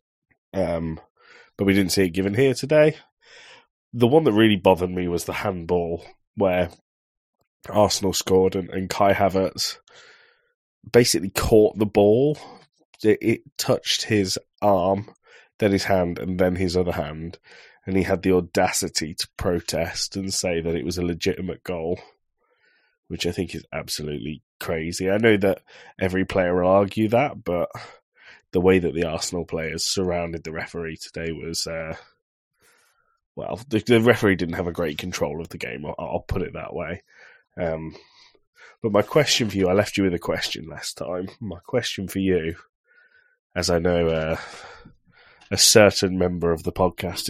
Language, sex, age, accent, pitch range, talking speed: English, male, 20-39, British, 90-110 Hz, 165 wpm